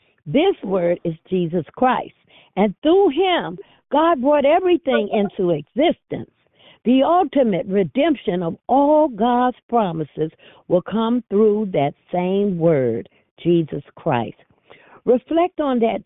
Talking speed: 115 wpm